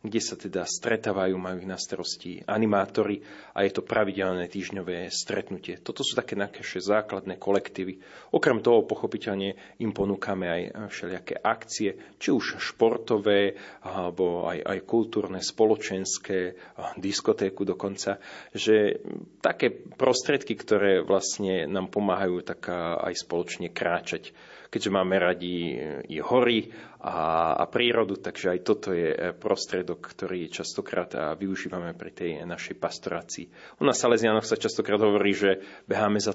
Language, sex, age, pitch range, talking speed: Slovak, male, 40-59, 95-105 Hz, 125 wpm